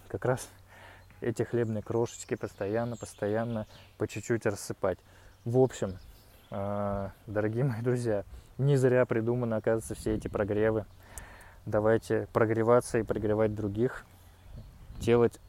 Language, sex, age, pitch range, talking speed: Russian, male, 20-39, 100-115 Hz, 105 wpm